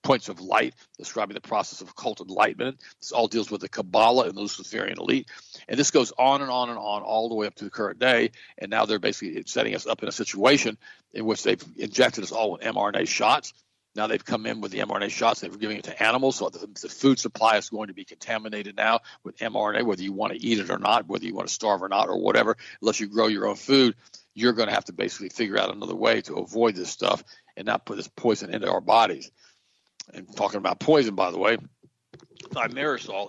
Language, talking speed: English, 240 wpm